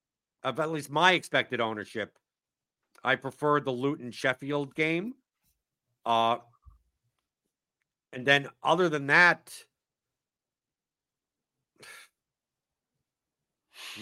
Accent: American